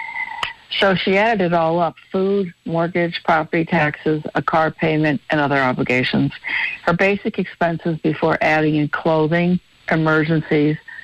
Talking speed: 130 wpm